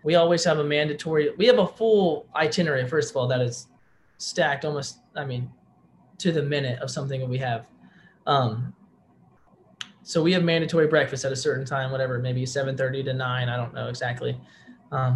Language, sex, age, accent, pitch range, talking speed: English, male, 20-39, American, 130-155 Hz, 185 wpm